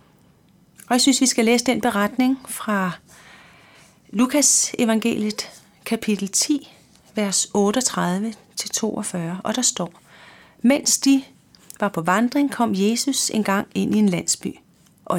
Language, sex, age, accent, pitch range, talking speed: Danish, female, 30-49, native, 185-235 Hz, 125 wpm